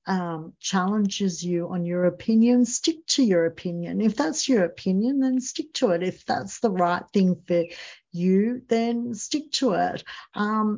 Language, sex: English, female